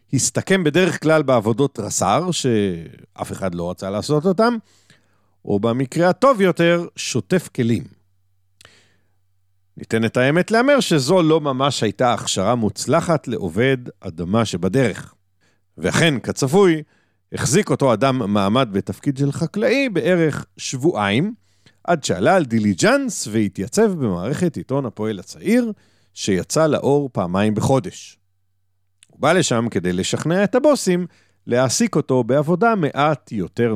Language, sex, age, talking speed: Hebrew, male, 50-69, 115 wpm